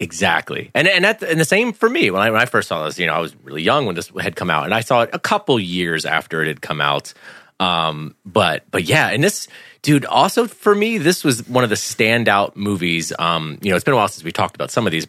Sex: male